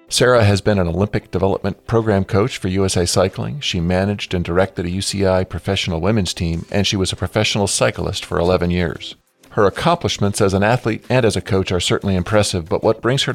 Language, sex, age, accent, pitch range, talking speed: English, male, 50-69, American, 90-110 Hz, 200 wpm